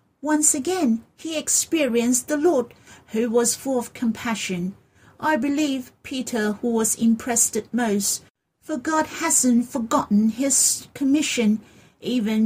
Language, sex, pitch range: Chinese, female, 225-295 Hz